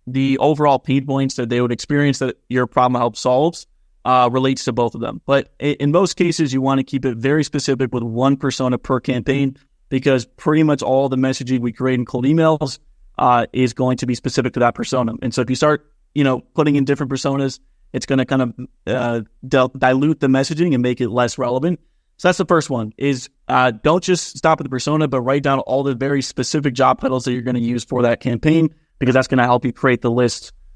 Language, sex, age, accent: English, male, 30-49, American